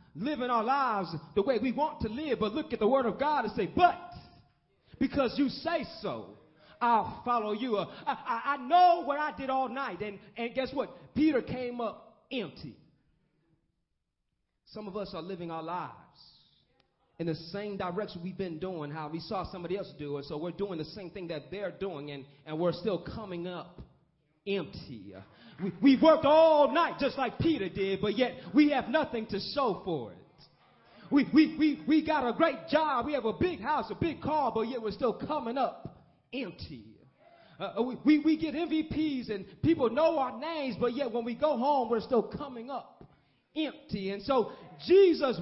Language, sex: English, male